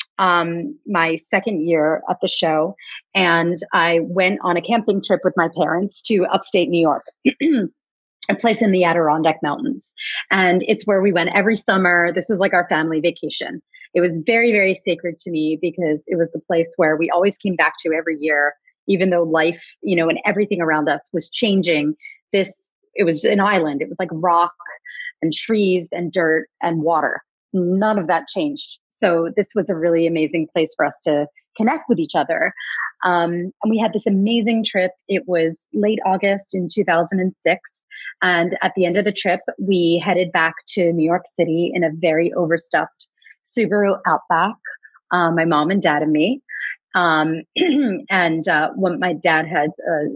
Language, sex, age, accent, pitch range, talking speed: English, female, 30-49, American, 165-200 Hz, 180 wpm